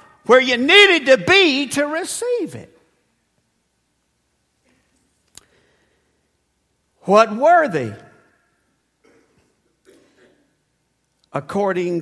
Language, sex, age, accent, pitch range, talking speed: English, male, 60-79, American, 155-230 Hz, 60 wpm